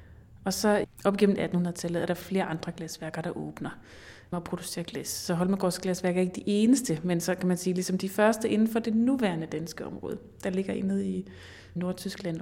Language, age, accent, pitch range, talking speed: Danish, 30-49, native, 170-205 Hz, 200 wpm